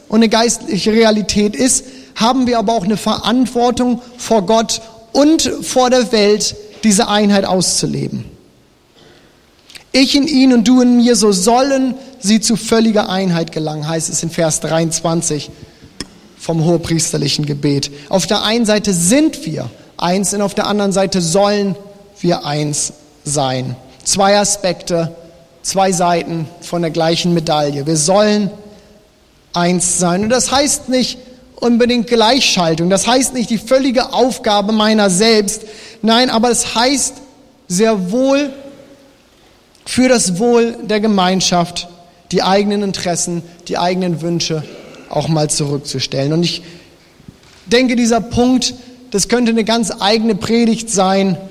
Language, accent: German, German